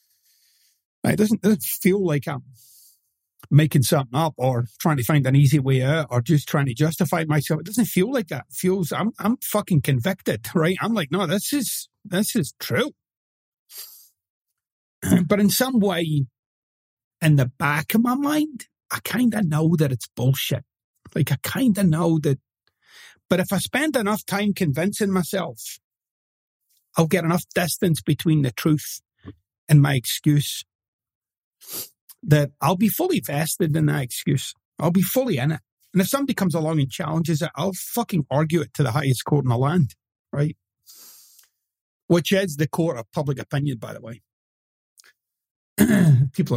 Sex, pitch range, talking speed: male, 135-190 Hz, 165 wpm